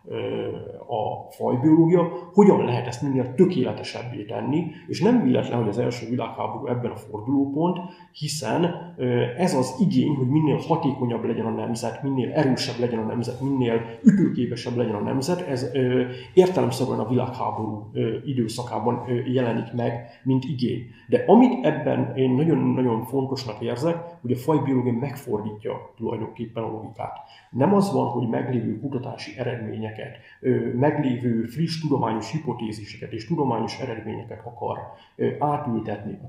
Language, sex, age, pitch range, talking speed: Hungarian, male, 30-49, 115-150 Hz, 130 wpm